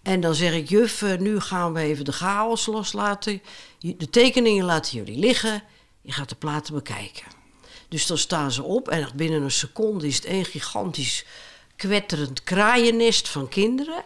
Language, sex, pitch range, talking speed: Dutch, female, 160-230 Hz, 165 wpm